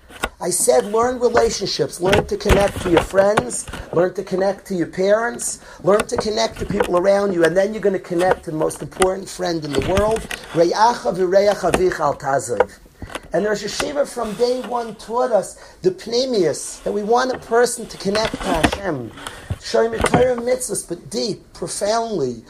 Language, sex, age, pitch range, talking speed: English, male, 40-59, 185-245 Hz, 170 wpm